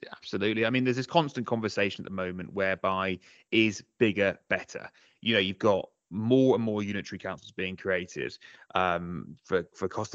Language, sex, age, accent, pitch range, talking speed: English, male, 20-39, British, 100-120 Hz, 170 wpm